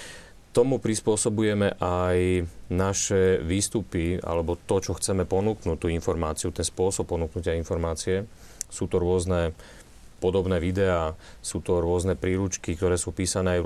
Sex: male